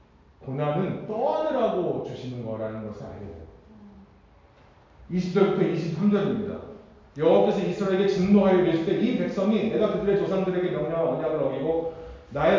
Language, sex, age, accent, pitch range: Korean, male, 40-59, native, 155-215 Hz